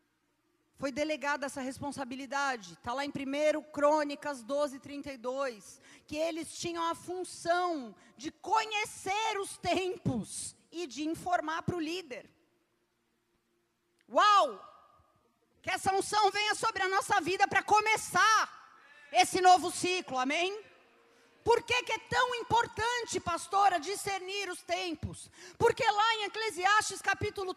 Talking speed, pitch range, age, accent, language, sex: 120 wpm, 315-430 Hz, 40-59, Brazilian, Portuguese, female